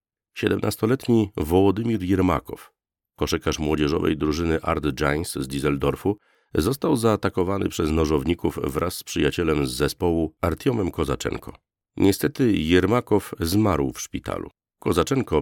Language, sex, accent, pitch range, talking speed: Polish, male, native, 75-100 Hz, 105 wpm